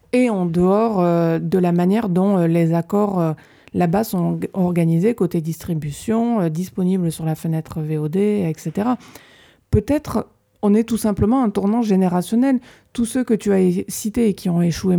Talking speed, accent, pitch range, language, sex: 175 wpm, French, 175-225 Hz, French, female